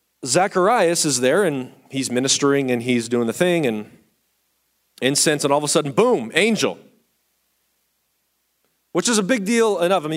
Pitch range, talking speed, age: 165-230 Hz, 165 wpm, 40-59